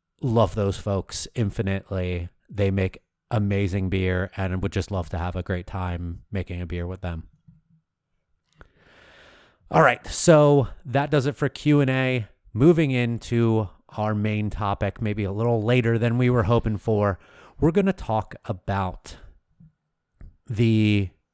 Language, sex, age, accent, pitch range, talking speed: English, male, 30-49, American, 95-125 Hz, 140 wpm